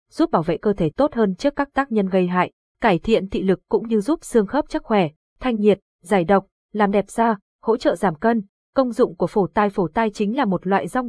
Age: 20-39